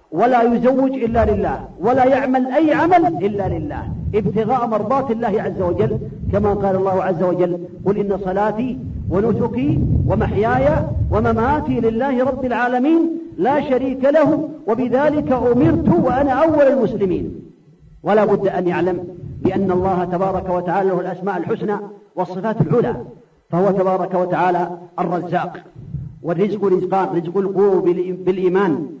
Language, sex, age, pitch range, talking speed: Arabic, male, 40-59, 180-225 Hz, 120 wpm